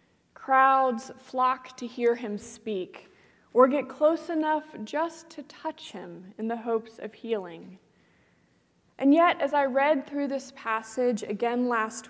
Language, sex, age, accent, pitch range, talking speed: English, female, 20-39, American, 225-275 Hz, 145 wpm